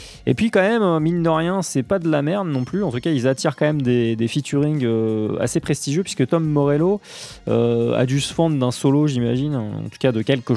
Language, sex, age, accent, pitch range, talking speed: English, male, 20-39, French, 115-150 Hz, 240 wpm